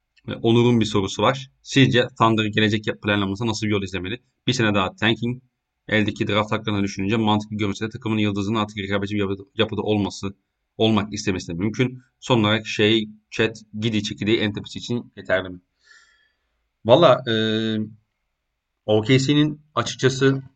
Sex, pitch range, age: male, 105-125 Hz, 30-49